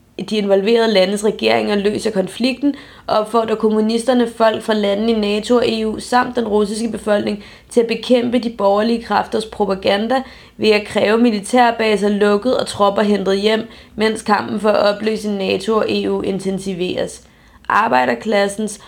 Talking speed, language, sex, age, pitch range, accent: 145 wpm, Danish, female, 20-39, 200-230 Hz, native